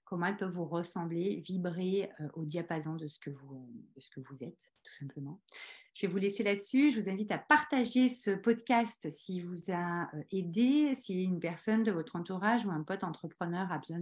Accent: French